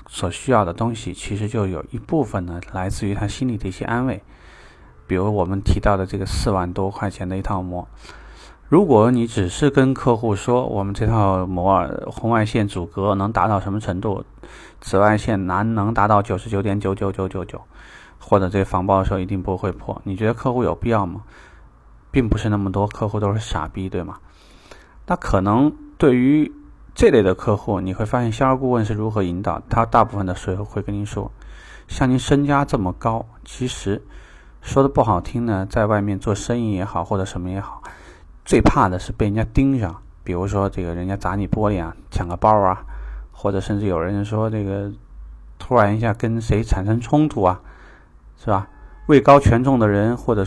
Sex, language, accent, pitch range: male, Chinese, native, 95-115 Hz